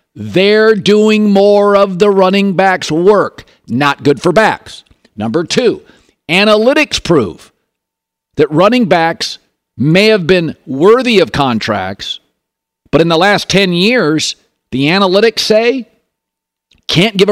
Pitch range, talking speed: 150-205 Hz, 125 wpm